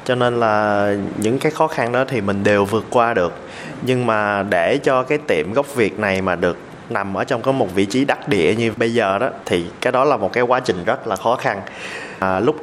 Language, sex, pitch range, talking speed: Vietnamese, male, 100-130 Hz, 245 wpm